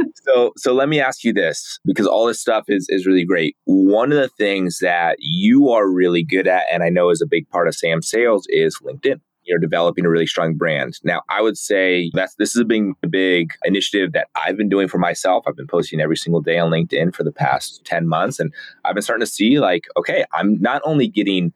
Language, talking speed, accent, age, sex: English, 235 wpm, American, 20-39, male